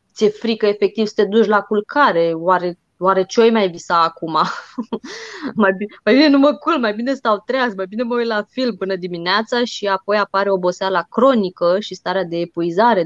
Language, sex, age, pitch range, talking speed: Romanian, female, 20-39, 180-230 Hz, 190 wpm